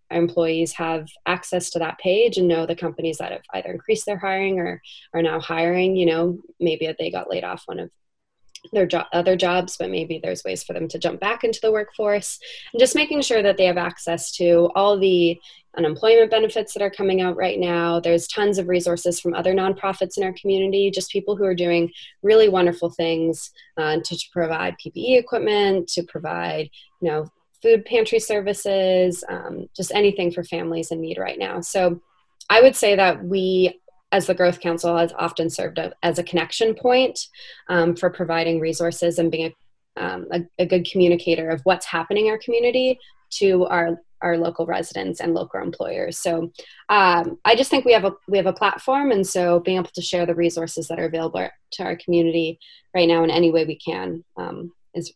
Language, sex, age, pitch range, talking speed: English, female, 20-39, 170-200 Hz, 200 wpm